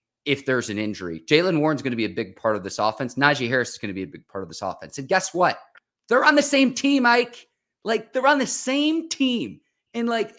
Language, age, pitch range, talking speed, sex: English, 30-49, 110-165 Hz, 255 wpm, male